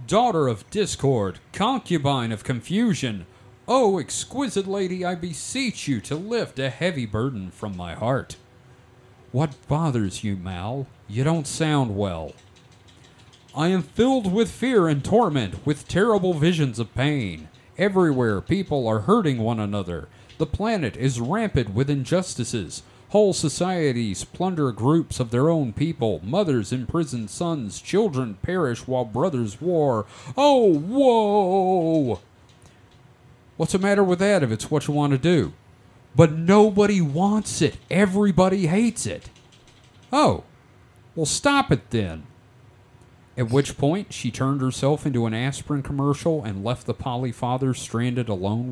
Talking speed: 135 wpm